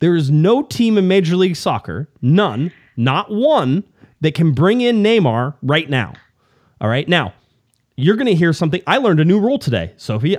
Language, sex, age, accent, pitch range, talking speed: English, male, 30-49, American, 105-170 Hz, 190 wpm